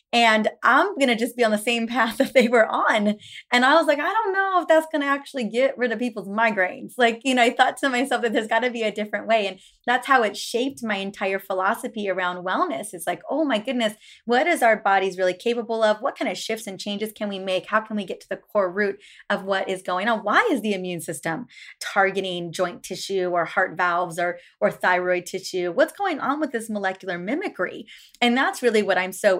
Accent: American